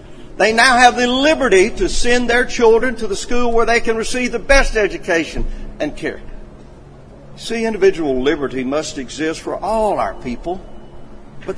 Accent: American